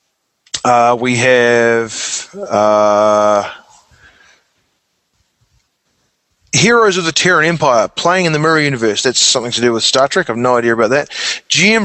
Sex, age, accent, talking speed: male, 30-49, Australian, 135 wpm